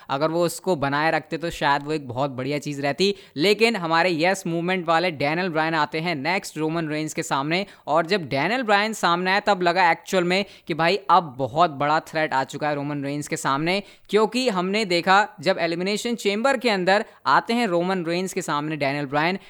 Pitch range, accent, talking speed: 165-210 Hz, native, 205 wpm